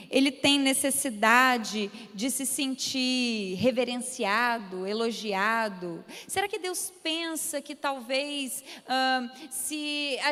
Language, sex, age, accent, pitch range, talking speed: Portuguese, female, 20-39, Brazilian, 240-300 Hz, 100 wpm